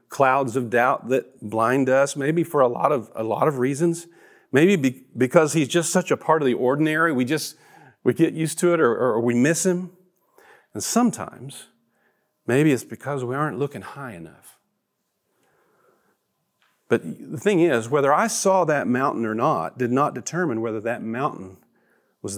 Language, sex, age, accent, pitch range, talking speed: English, male, 40-59, American, 120-170 Hz, 175 wpm